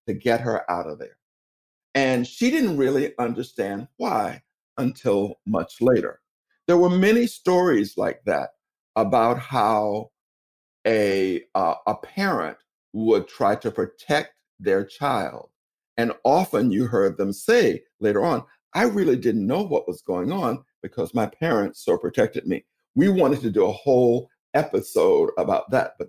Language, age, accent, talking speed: English, 50-69, American, 150 wpm